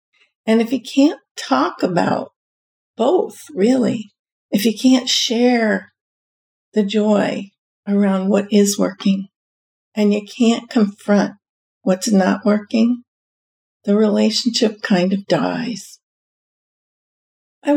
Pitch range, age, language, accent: 205-245 Hz, 50-69, English, American